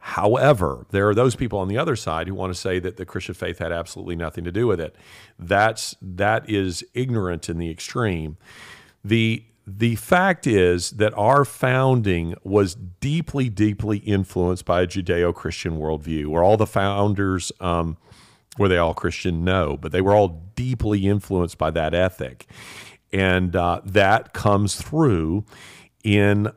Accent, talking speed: American, 160 wpm